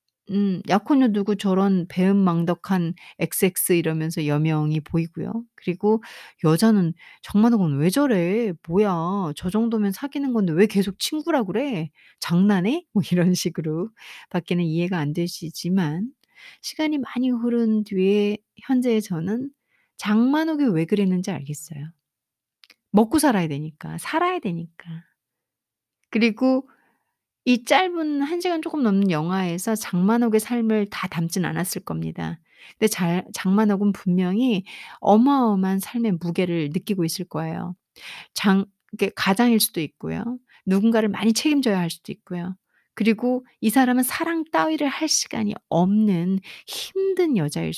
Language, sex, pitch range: Korean, female, 180-240 Hz